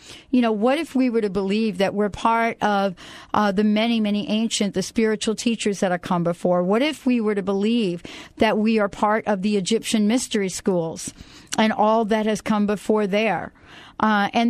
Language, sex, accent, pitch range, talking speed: English, female, American, 190-230 Hz, 200 wpm